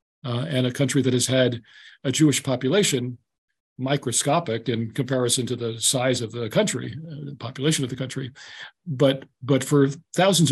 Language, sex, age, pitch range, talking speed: English, male, 40-59, 125-155 Hz, 160 wpm